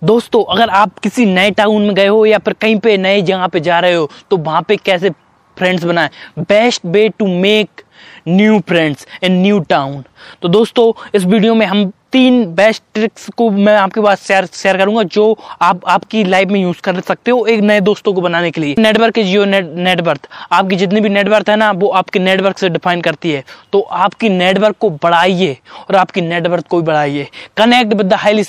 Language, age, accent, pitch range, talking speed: Hindi, 20-39, native, 185-215 Hz, 195 wpm